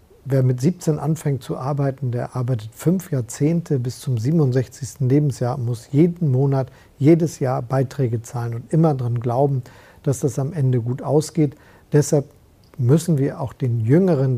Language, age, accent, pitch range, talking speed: German, 50-69, German, 120-145 Hz, 160 wpm